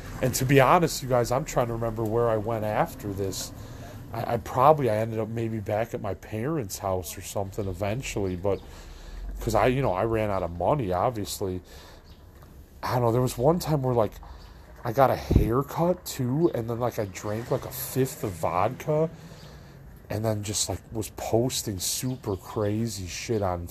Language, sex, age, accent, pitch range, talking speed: English, male, 30-49, American, 100-125 Hz, 190 wpm